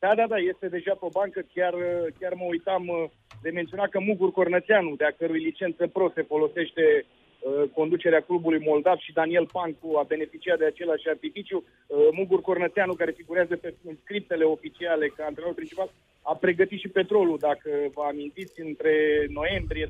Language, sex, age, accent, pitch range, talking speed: Romanian, male, 30-49, native, 155-195 Hz, 165 wpm